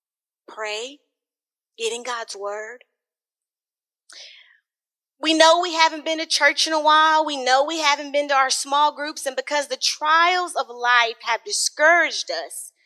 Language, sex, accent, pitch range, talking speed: English, female, American, 245-335 Hz, 155 wpm